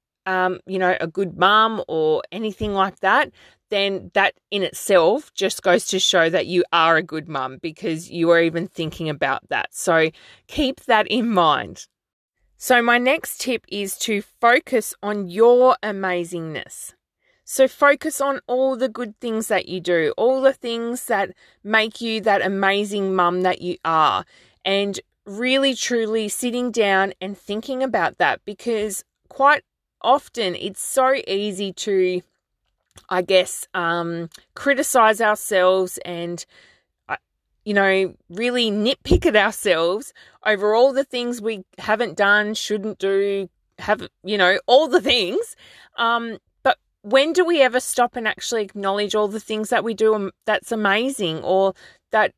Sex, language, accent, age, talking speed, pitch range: female, English, Australian, 20-39, 150 wpm, 185-235 Hz